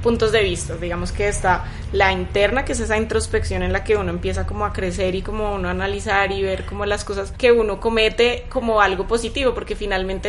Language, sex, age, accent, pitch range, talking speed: Spanish, female, 20-39, Colombian, 190-235 Hz, 220 wpm